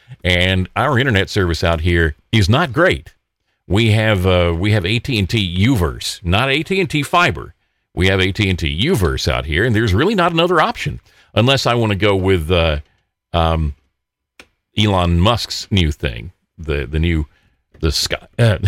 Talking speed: 185 wpm